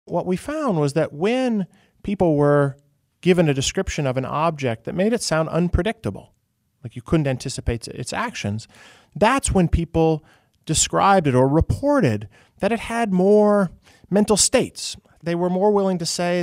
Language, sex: English, male